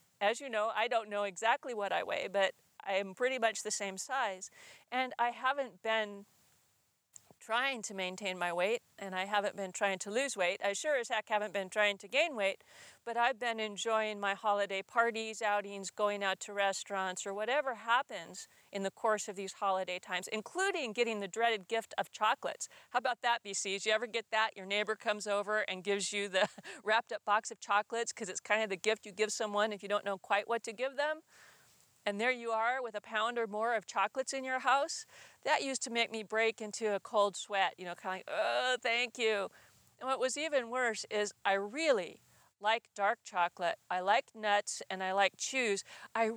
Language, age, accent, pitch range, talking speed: English, 40-59, American, 200-235 Hz, 210 wpm